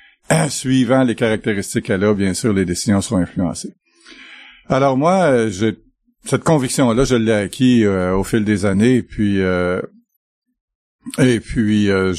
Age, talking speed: 50-69, 155 wpm